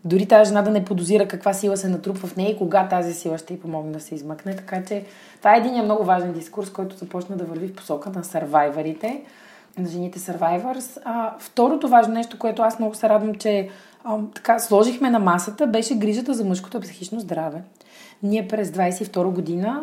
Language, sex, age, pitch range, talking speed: Bulgarian, female, 20-39, 180-220 Hz, 195 wpm